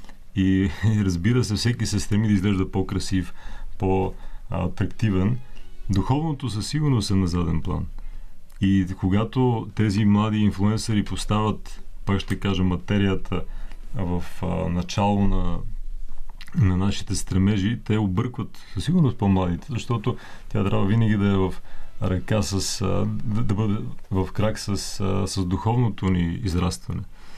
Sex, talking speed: male, 125 wpm